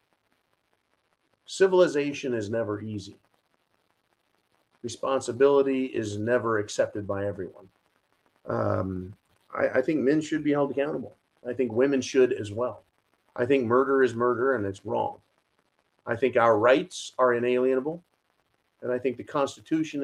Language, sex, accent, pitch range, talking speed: English, male, American, 110-140 Hz, 130 wpm